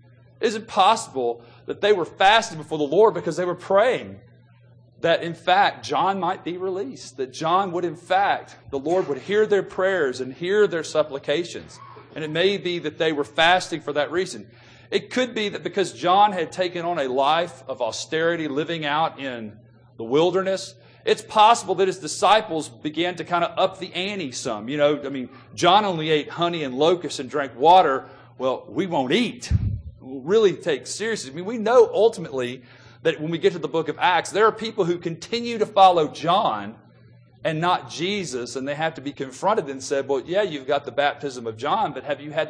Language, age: English, 40-59